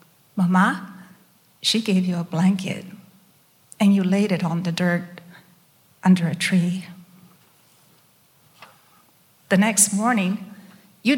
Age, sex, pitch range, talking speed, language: 50-69, female, 180-210 Hz, 105 wpm, English